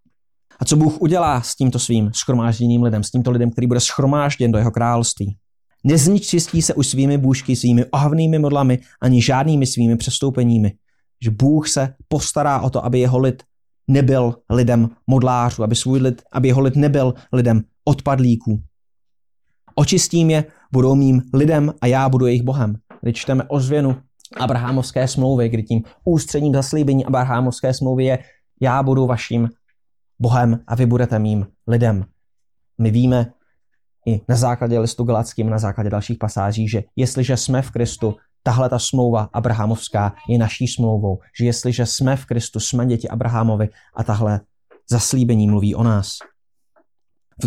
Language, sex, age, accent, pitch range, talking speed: Czech, male, 20-39, native, 115-130 Hz, 150 wpm